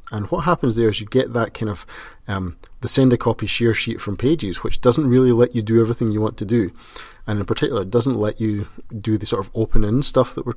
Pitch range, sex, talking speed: 100-115 Hz, male, 260 wpm